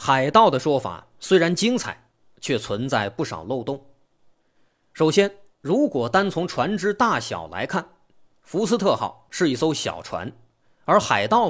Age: 30-49